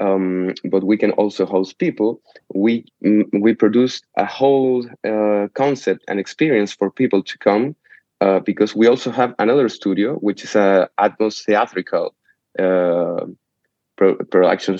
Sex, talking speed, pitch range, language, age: male, 140 wpm, 95-115 Hz, English, 20-39